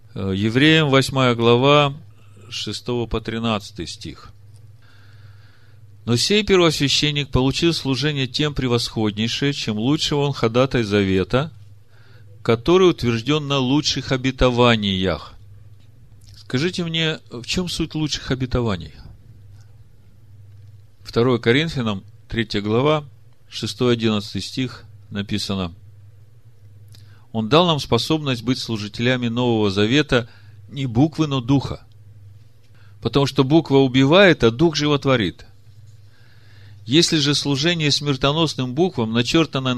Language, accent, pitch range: Russian, native, 105-140 Hz